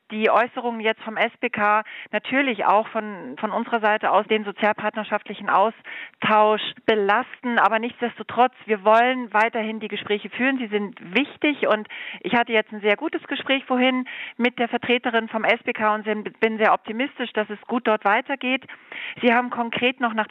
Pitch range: 215-250 Hz